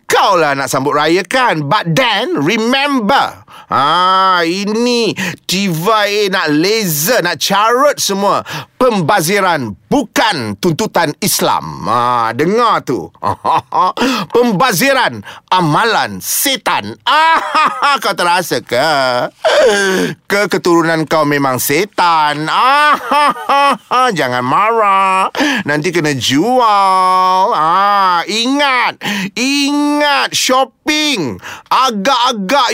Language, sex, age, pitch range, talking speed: Malay, male, 30-49, 185-250 Hz, 80 wpm